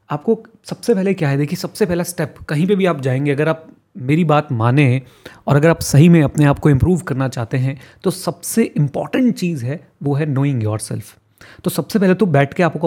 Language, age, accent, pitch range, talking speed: Hindi, 30-49, native, 135-180 Hz, 220 wpm